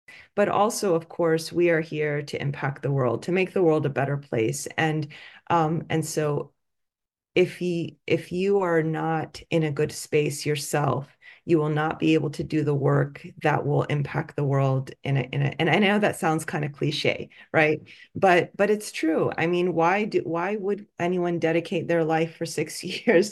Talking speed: 200 wpm